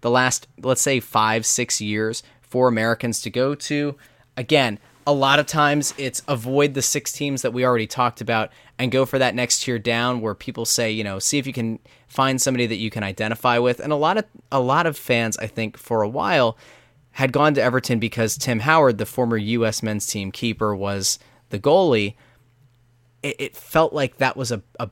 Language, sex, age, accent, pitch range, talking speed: English, male, 20-39, American, 110-135 Hz, 210 wpm